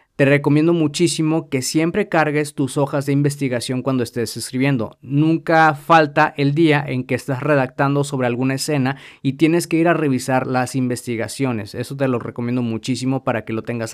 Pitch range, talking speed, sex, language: 130-150 Hz, 175 wpm, male, Spanish